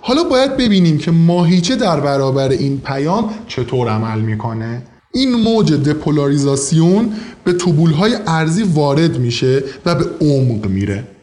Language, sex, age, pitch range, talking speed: Persian, male, 20-39, 145-190 Hz, 135 wpm